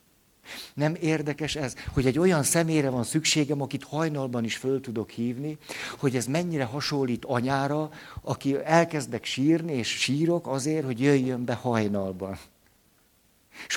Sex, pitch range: male, 120-155 Hz